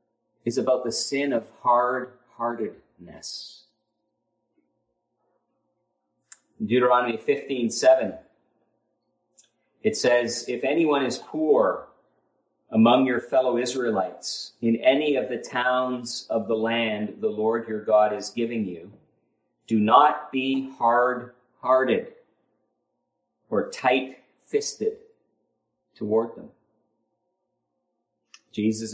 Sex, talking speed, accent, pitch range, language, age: male, 95 wpm, American, 110-125 Hz, English, 40-59